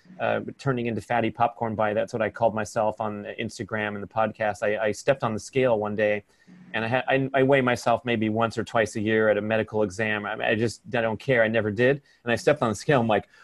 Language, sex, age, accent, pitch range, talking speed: English, male, 30-49, American, 115-145 Hz, 265 wpm